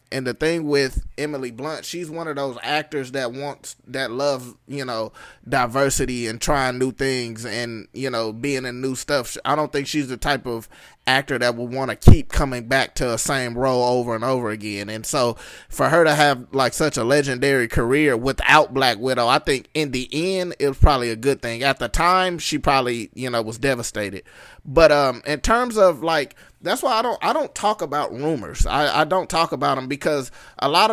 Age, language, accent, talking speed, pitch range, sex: 20-39, English, American, 215 wpm, 130-165 Hz, male